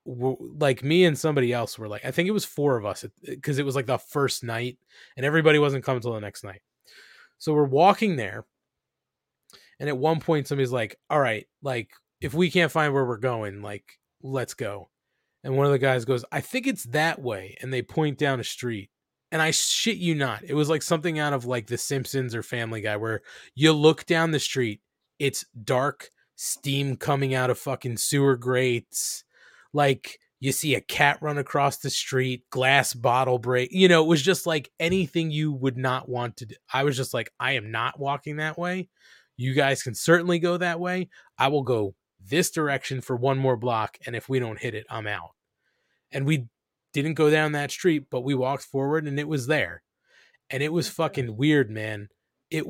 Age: 20-39